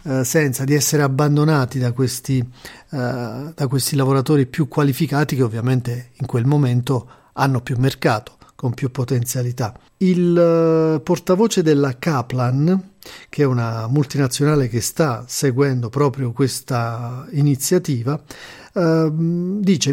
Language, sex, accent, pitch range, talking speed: Italian, male, native, 125-155 Hz, 110 wpm